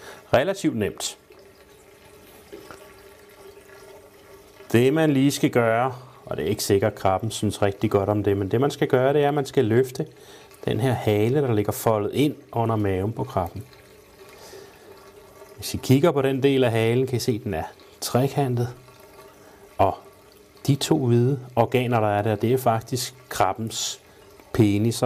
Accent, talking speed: native, 165 wpm